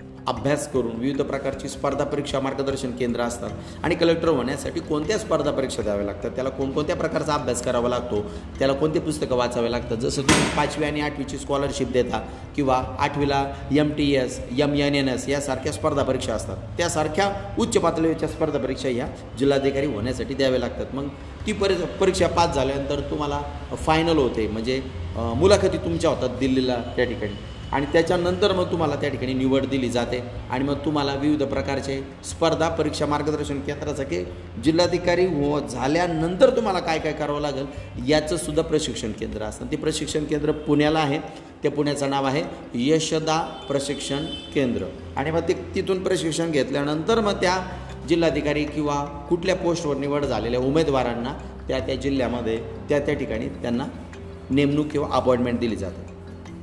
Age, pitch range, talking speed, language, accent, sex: 30-49, 125-155 Hz, 150 wpm, Marathi, native, male